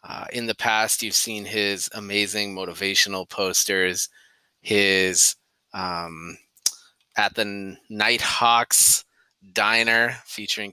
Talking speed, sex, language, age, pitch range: 95 wpm, male, English, 20-39, 95-110 Hz